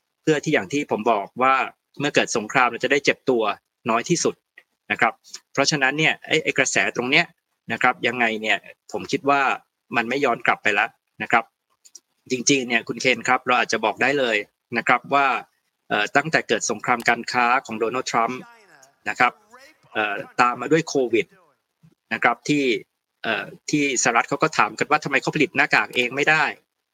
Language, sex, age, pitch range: Thai, male, 20-39, 125-145 Hz